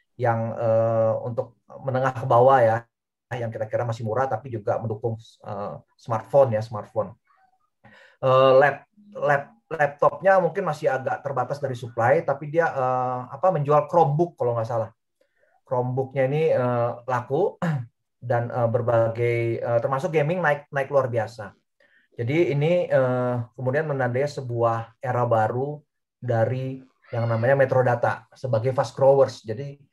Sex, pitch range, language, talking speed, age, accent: male, 120-145 Hz, Indonesian, 130 wpm, 30-49, native